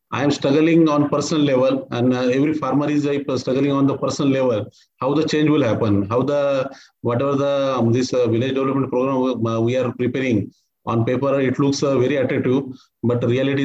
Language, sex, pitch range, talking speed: English, male, 125-145 Hz, 200 wpm